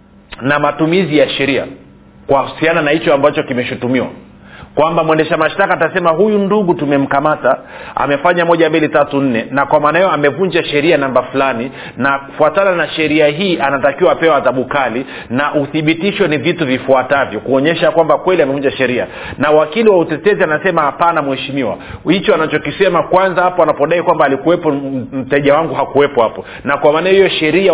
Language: Swahili